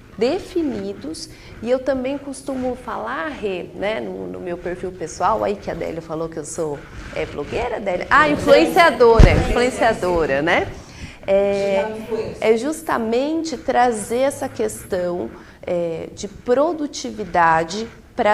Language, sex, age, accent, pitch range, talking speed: Portuguese, female, 40-59, Brazilian, 200-295 Hz, 120 wpm